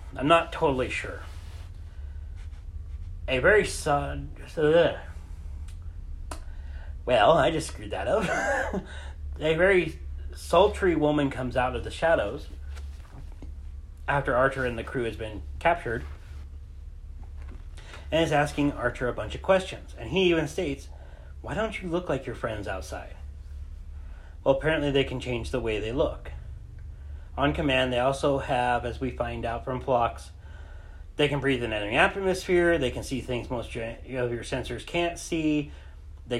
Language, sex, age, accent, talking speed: English, male, 40-59, American, 145 wpm